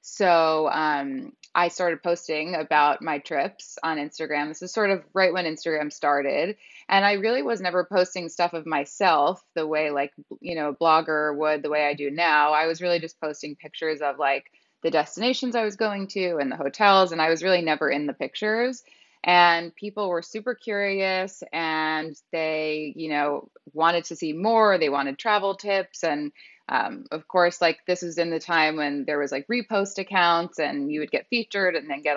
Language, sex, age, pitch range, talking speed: English, female, 20-39, 155-185 Hz, 200 wpm